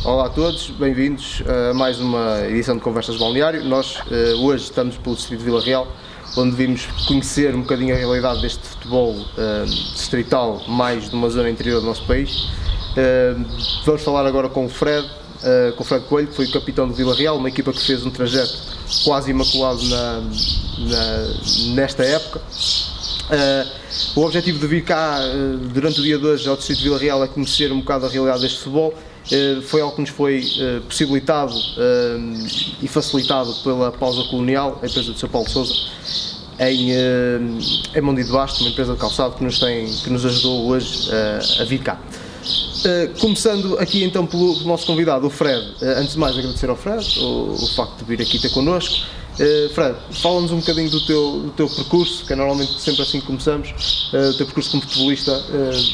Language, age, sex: Portuguese, 20-39, male